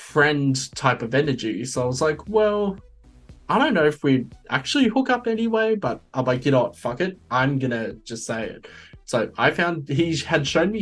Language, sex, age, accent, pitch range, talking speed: English, male, 20-39, Australian, 120-150 Hz, 210 wpm